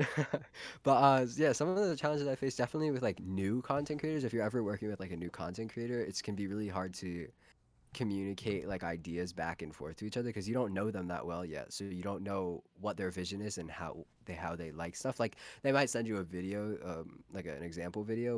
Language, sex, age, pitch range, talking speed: English, male, 20-39, 90-125 Hz, 245 wpm